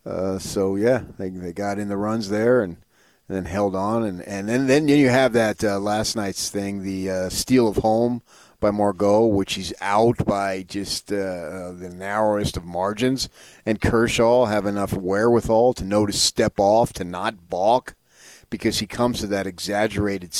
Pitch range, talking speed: 100-115 Hz, 180 wpm